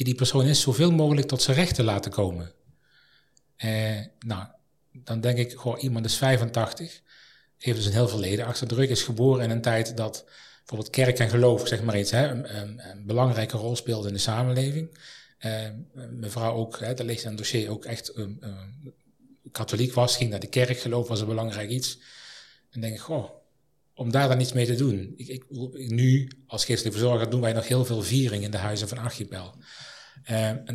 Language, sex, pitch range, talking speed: Dutch, male, 115-135 Hz, 200 wpm